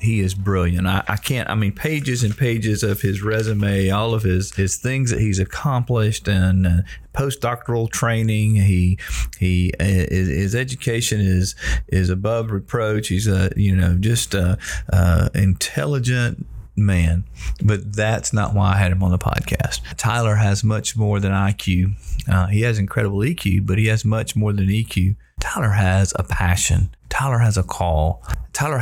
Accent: American